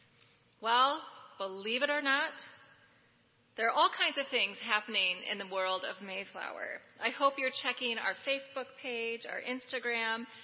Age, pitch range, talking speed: 30-49, 205-260 Hz, 150 wpm